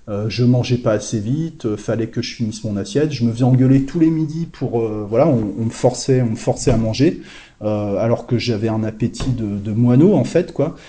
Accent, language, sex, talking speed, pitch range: French, French, male, 245 wpm, 115-145 Hz